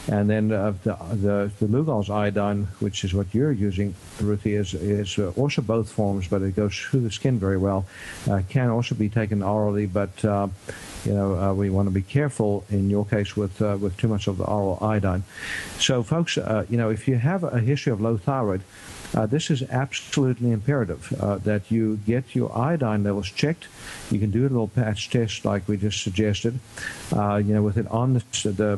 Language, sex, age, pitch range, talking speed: English, male, 50-69, 100-120 Hz, 205 wpm